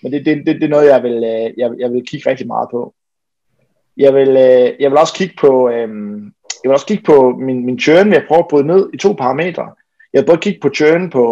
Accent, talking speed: native, 255 wpm